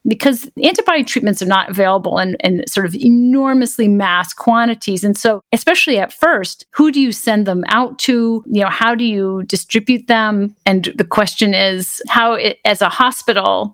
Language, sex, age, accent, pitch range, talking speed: English, female, 40-59, American, 185-230 Hz, 175 wpm